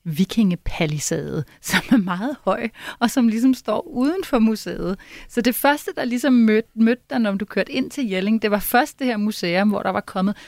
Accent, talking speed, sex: native, 200 wpm, female